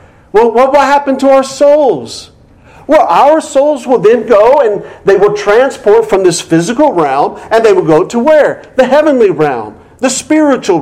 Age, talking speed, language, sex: 50-69, 175 wpm, English, male